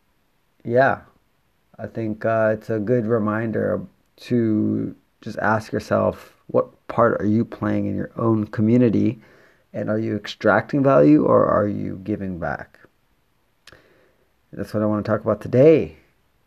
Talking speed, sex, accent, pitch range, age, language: 140 wpm, male, American, 105-120 Hz, 30-49, English